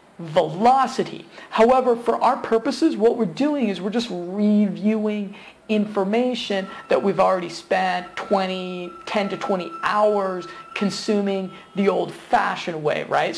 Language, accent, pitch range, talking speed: English, American, 180-220 Hz, 120 wpm